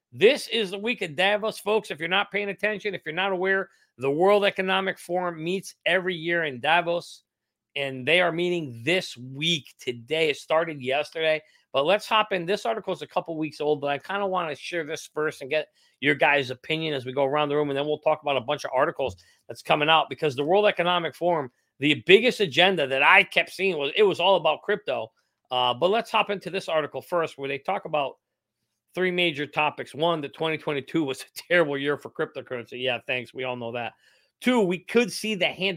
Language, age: English, 40-59